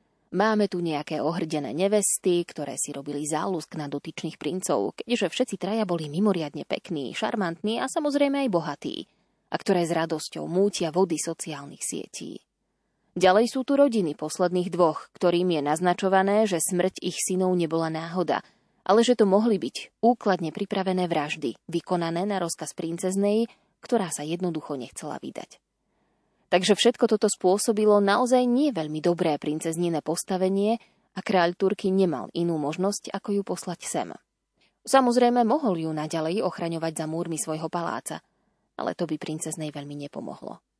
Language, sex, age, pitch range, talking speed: Slovak, female, 20-39, 165-205 Hz, 145 wpm